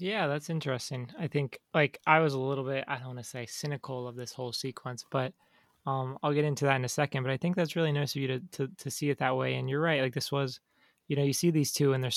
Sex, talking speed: male, 290 wpm